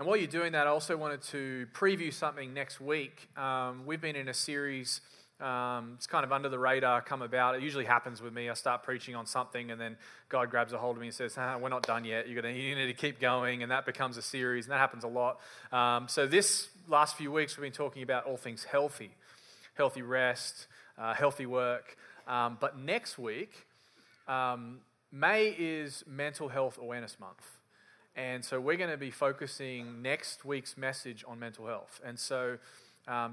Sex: male